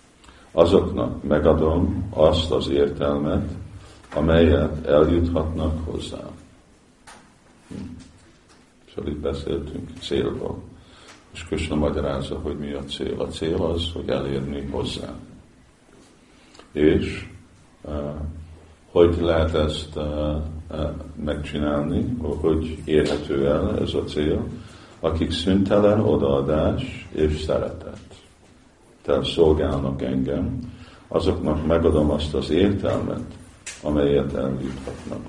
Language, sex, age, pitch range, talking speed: Hungarian, male, 50-69, 70-85 Hz, 85 wpm